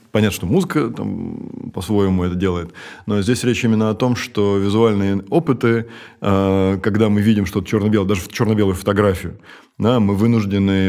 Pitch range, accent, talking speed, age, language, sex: 90-105 Hz, native, 155 wpm, 20-39, Russian, male